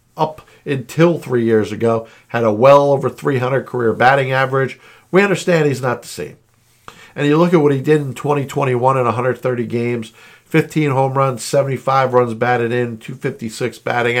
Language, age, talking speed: English, 50-69, 170 wpm